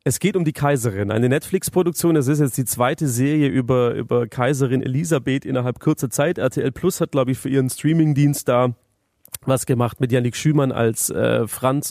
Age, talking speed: 40-59, 185 wpm